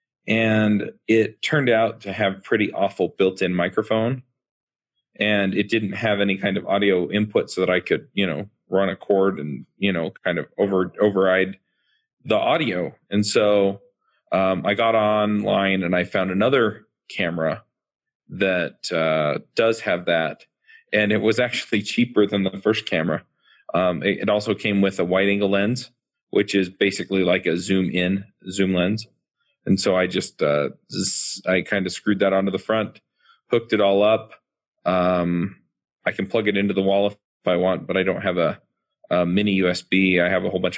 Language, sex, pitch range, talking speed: English, male, 95-105 Hz, 180 wpm